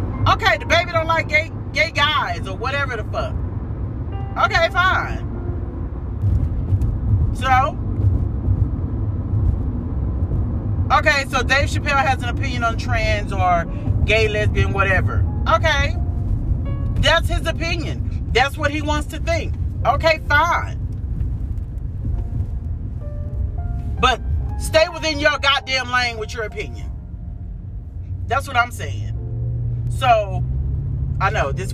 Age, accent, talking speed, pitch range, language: 40-59, American, 110 wpm, 95-115 Hz, English